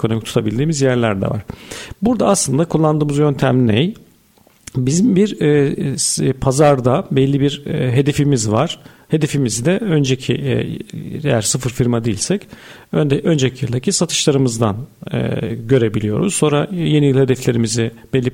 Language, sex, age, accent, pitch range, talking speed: Turkish, male, 50-69, native, 120-155 Hz, 135 wpm